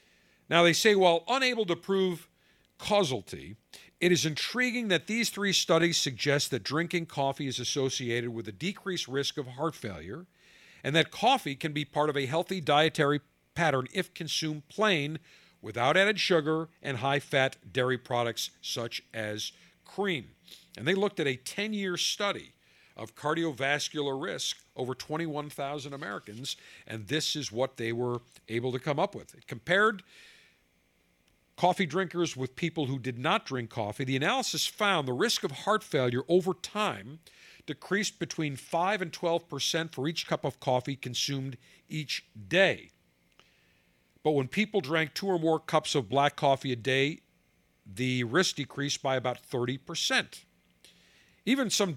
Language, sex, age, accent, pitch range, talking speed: English, male, 50-69, American, 130-175 Hz, 155 wpm